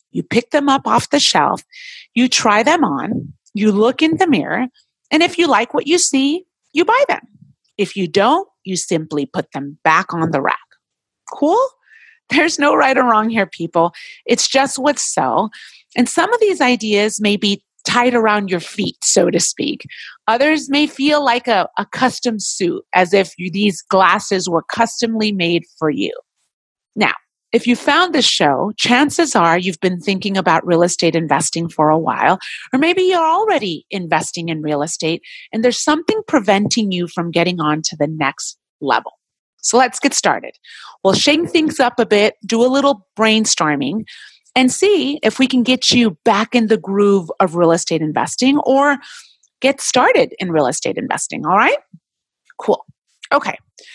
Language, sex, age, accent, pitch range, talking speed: English, female, 30-49, American, 185-290 Hz, 175 wpm